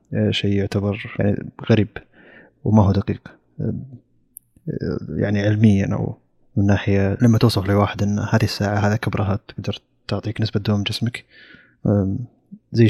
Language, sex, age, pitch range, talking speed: Arabic, male, 20-39, 100-115 Hz, 120 wpm